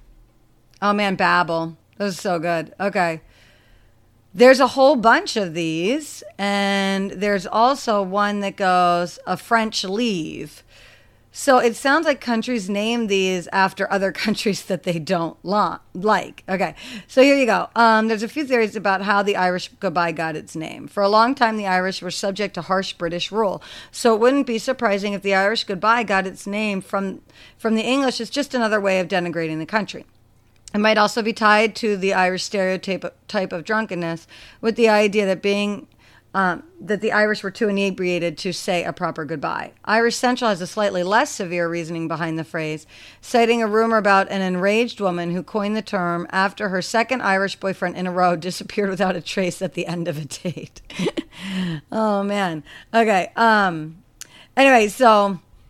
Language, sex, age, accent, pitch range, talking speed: English, female, 40-59, American, 175-220 Hz, 180 wpm